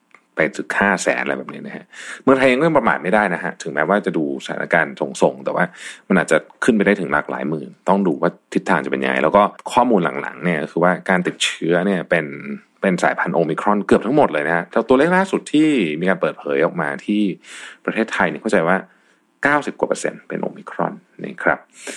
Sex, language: male, Thai